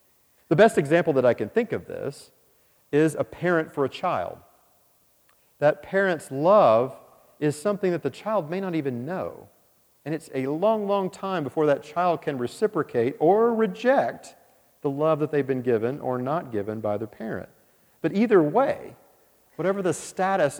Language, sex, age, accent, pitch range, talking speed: English, male, 40-59, American, 135-190 Hz, 170 wpm